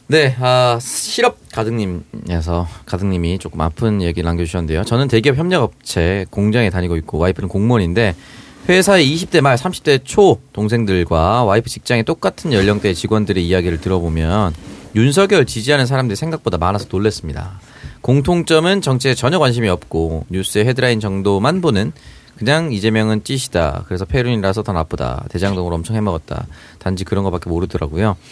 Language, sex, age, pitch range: Korean, male, 30-49, 95-135 Hz